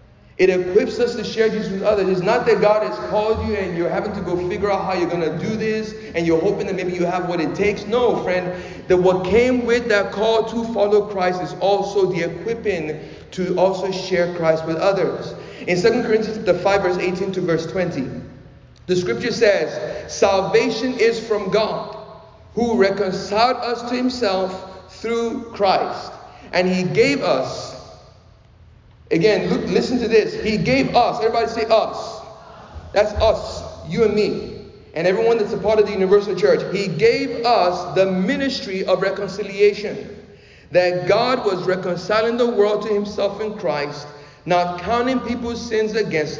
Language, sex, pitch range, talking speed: English, male, 180-225 Hz, 170 wpm